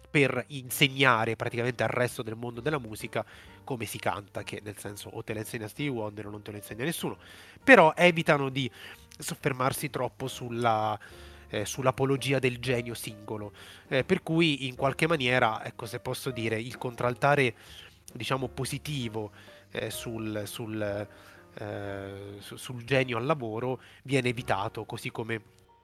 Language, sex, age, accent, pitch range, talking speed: Italian, male, 30-49, native, 105-130 Hz, 150 wpm